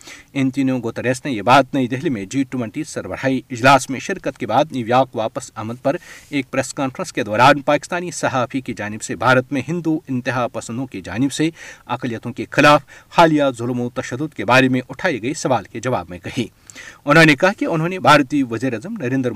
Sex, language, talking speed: male, Urdu, 185 wpm